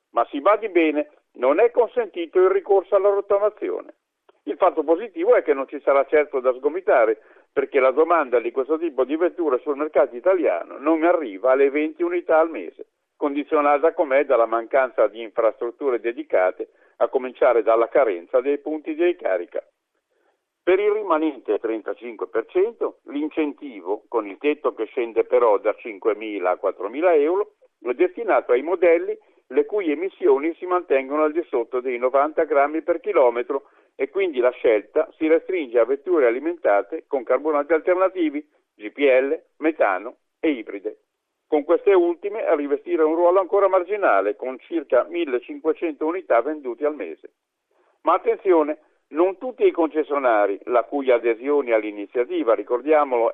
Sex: male